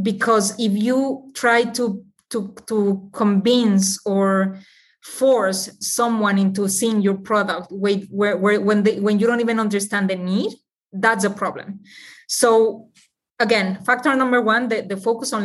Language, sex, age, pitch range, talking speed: English, female, 20-39, 195-225 Hz, 150 wpm